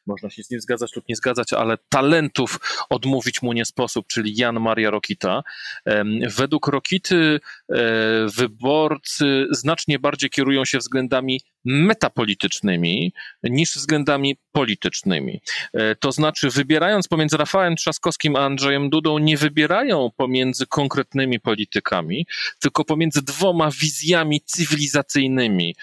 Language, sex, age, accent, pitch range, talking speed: Polish, male, 40-59, native, 110-145 Hz, 115 wpm